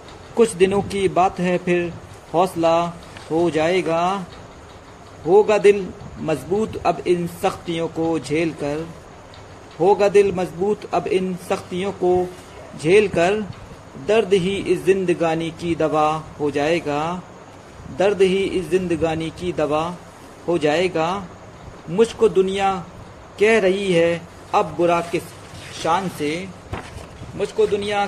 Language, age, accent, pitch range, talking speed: Hindi, 40-59, native, 155-190 Hz, 115 wpm